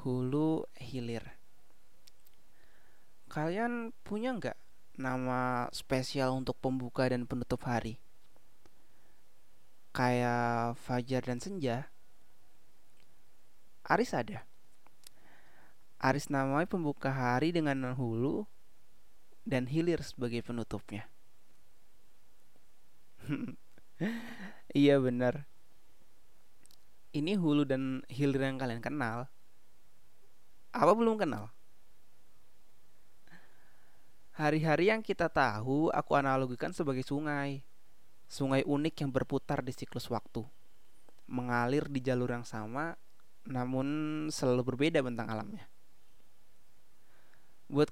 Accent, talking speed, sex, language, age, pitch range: native, 85 wpm, male, Indonesian, 20-39, 125-150 Hz